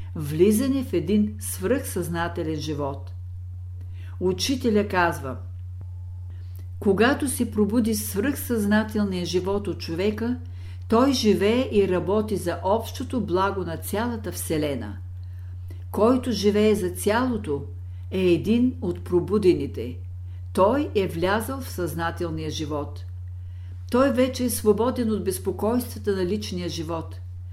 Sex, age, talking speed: female, 60-79, 100 wpm